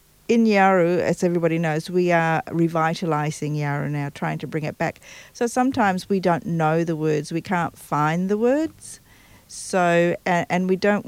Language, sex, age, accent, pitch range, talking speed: English, female, 50-69, Australian, 160-200 Hz, 175 wpm